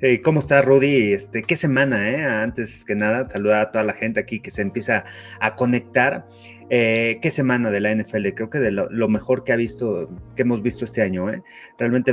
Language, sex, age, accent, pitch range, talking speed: Spanish, male, 30-49, Mexican, 105-130 Hz, 215 wpm